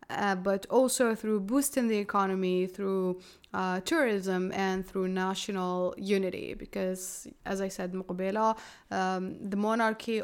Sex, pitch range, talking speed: female, 185-220 Hz, 125 wpm